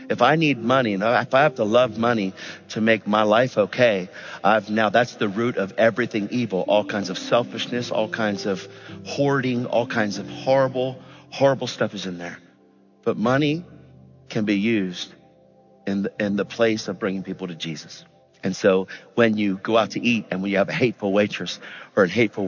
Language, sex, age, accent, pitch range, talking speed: English, male, 50-69, American, 100-130 Hz, 190 wpm